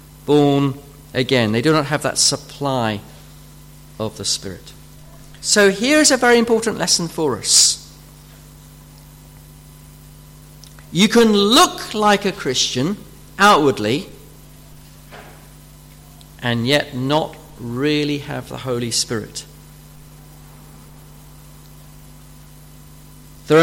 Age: 50-69